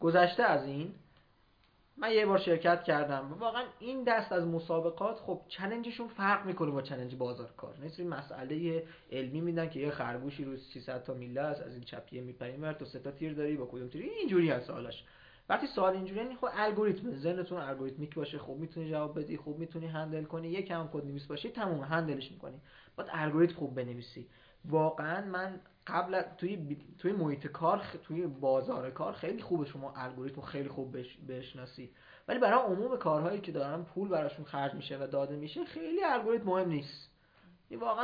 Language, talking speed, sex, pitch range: Persian, 180 wpm, male, 135-180 Hz